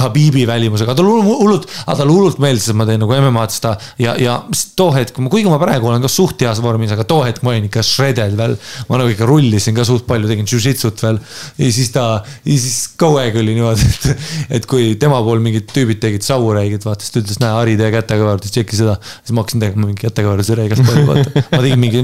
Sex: male